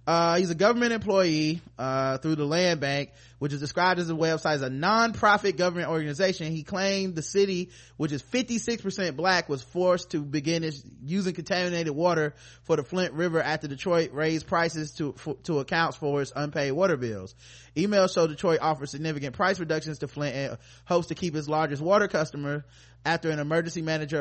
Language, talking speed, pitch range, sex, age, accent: English, 180 wpm, 145-175 Hz, male, 20-39, American